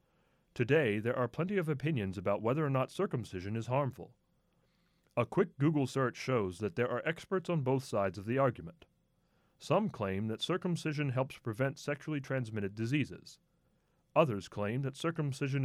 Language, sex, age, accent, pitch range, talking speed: English, male, 30-49, American, 105-145 Hz, 155 wpm